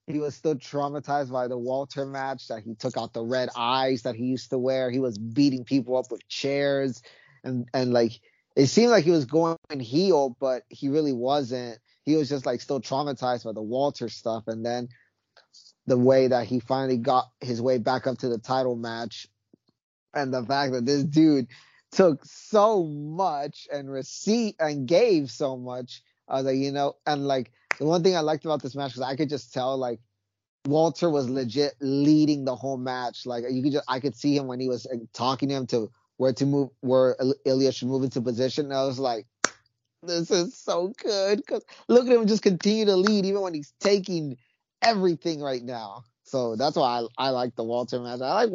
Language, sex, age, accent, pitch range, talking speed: English, male, 20-39, American, 125-150 Hz, 210 wpm